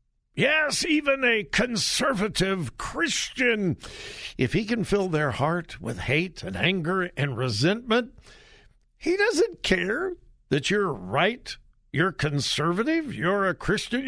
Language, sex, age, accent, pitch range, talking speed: English, male, 60-79, American, 125-210 Hz, 120 wpm